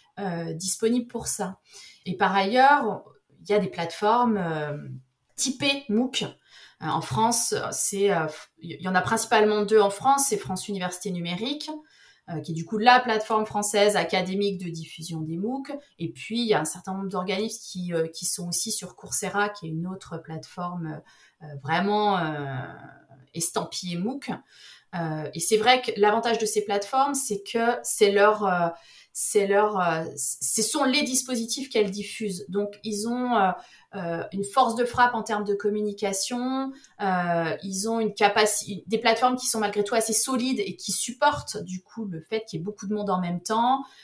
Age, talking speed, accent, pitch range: 30-49, 185 wpm, French, 180-235 Hz